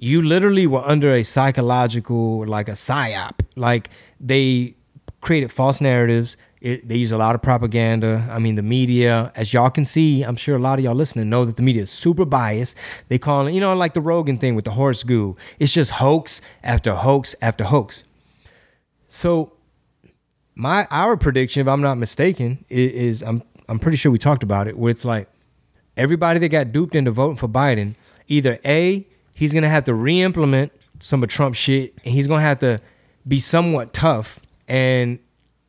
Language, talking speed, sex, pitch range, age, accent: English, 190 wpm, male, 120-150 Hz, 30-49, American